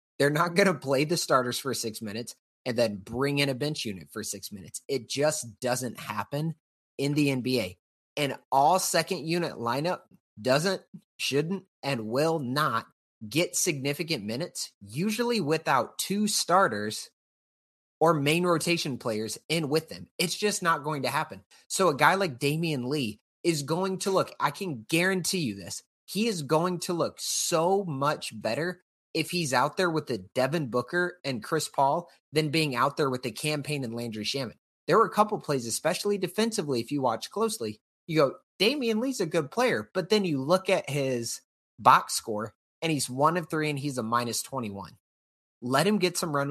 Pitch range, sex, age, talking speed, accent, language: 125-175 Hz, male, 30-49, 185 wpm, American, English